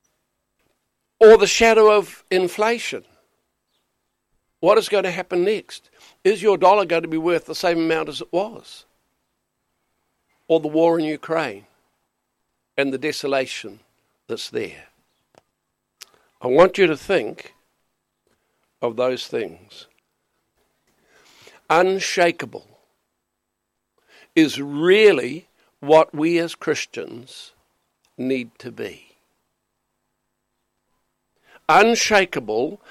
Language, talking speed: English, 95 wpm